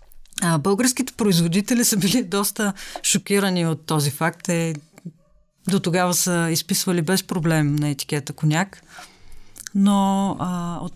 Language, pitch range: Bulgarian, 160-190 Hz